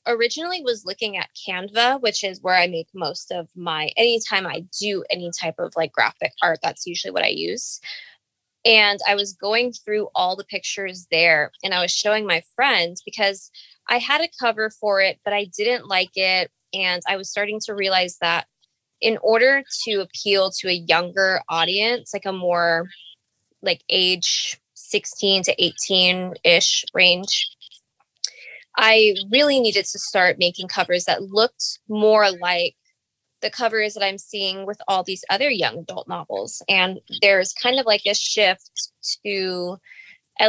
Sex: female